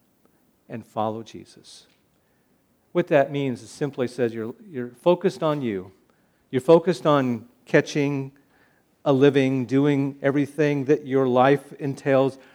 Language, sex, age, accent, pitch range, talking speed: English, male, 50-69, American, 120-150 Hz, 125 wpm